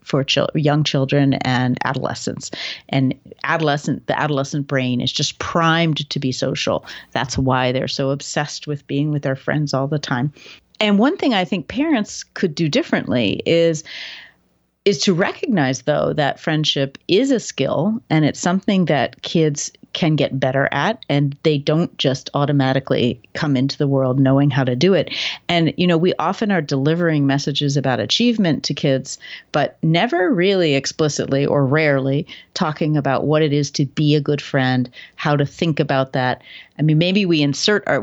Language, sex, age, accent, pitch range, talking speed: English, female, 40-59, American, 135-170 Hz, 175 wpm